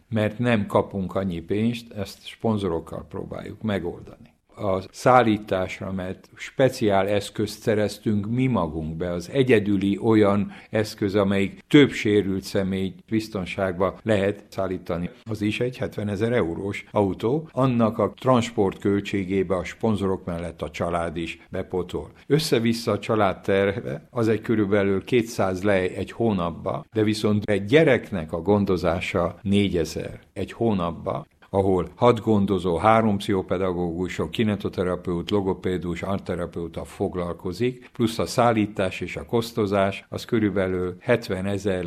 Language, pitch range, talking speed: Hungarian, 95-110 Hz, 120 wpm